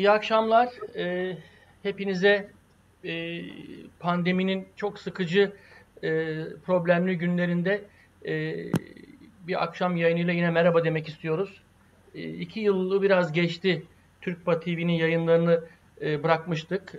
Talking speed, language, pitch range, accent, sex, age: 100 wpm, Turkish, 160-185 Hz, native, male, 60-79